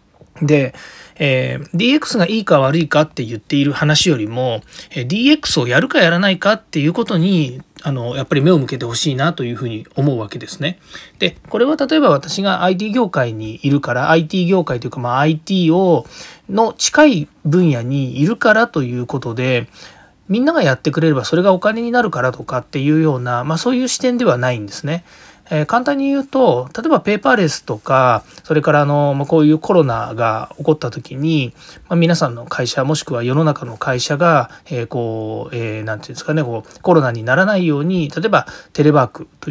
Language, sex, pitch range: Japanese, male, 130-190 Hz